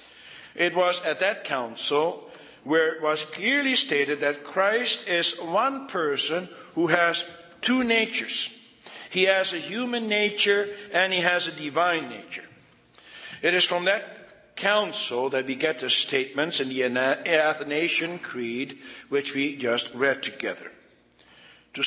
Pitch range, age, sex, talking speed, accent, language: 145-200 Hz, 60-79, male, 135 wpm, American, English